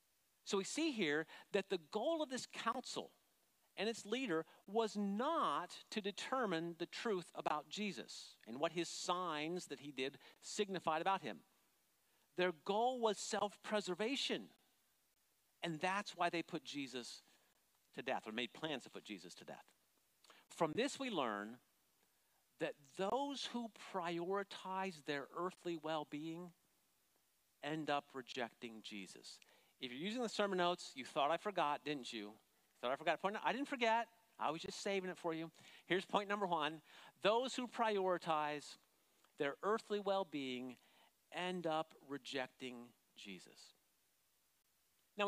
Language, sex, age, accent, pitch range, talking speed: English, male, 50-69, American, 150-205 Hz, 140 wpm